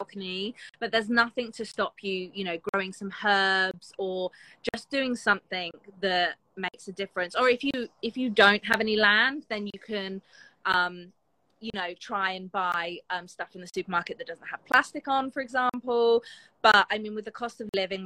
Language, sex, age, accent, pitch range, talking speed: English, female, 20-39, British, 185-220 Hz, 190 wpm